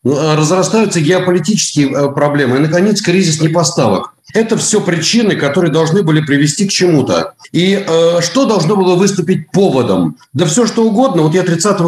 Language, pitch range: Russian, 150-195 Hz